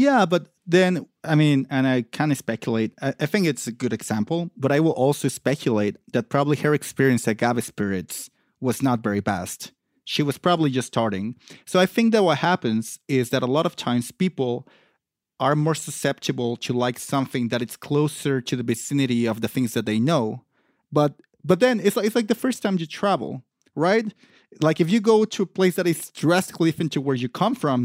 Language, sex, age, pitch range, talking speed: English, male, 30-49, 125-180 Hz, 210 wpm